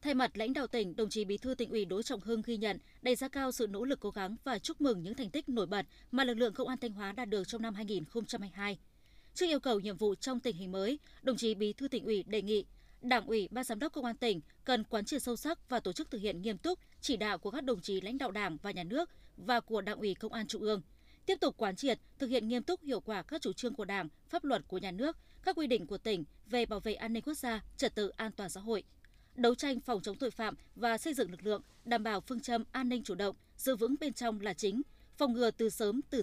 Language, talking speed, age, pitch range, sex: Vietnamese, 280 wpm, 20-39, 205-250 Hz, female